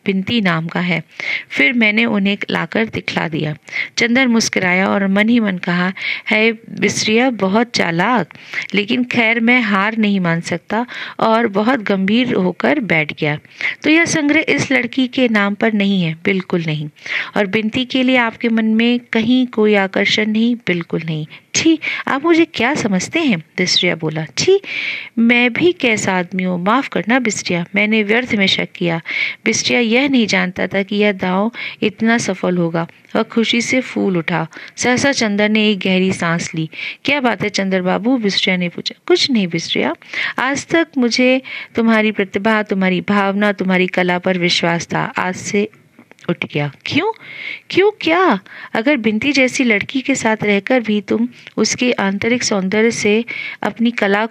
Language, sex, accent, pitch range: Hindi, female, native, 190-245 Hz